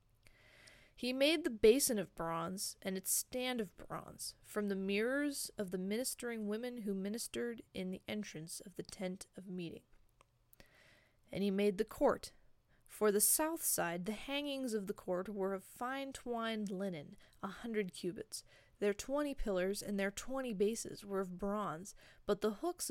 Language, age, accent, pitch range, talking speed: English, 20-39, American, 175-230 Hz, 165 wpm